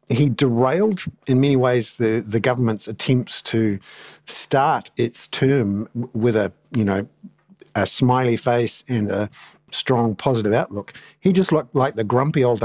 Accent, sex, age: Australian, male, 50-69